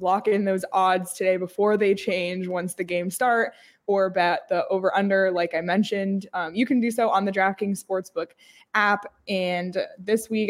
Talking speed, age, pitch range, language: 185 wpm, 20-39, 180-225 Hz, English